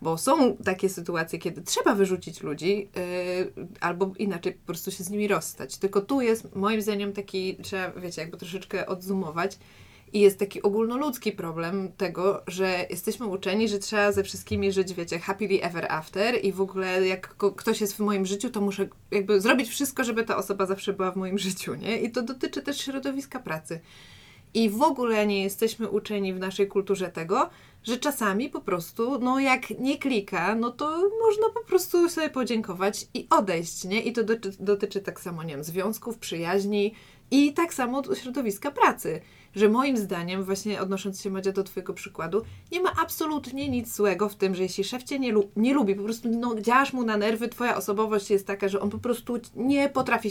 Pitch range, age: 195-250 Hz, 20-39